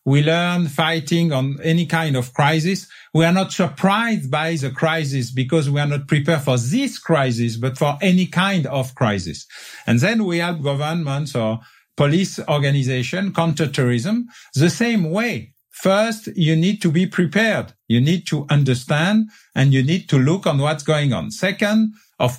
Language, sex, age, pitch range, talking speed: English, male, 50-69, 145-190 Hz, 165 wpm